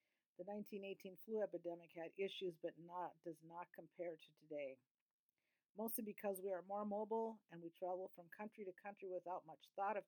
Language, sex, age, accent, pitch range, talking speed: English, female, 50-69, American, 170-210 Hz, 180 wpm